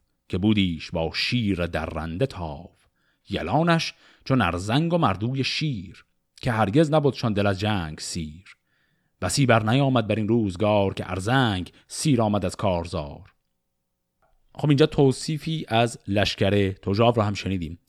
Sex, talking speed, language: male, 140 wpm, Persian